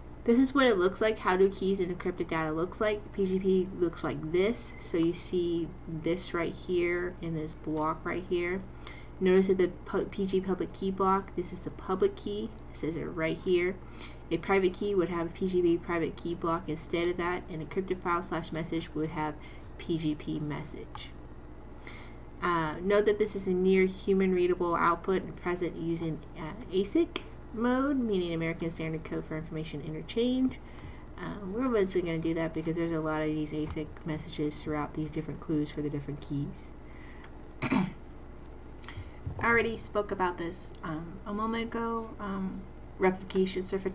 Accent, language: American, English